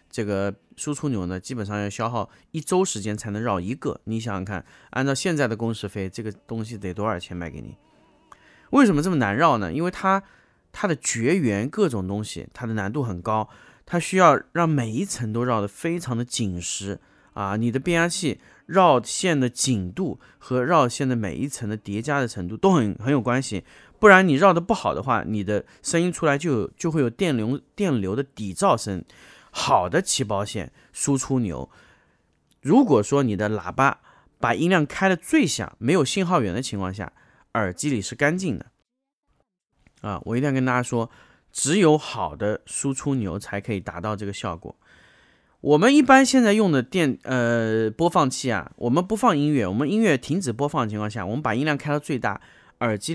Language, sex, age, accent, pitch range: Chinese, male, 20-39, native, 105-150 Hz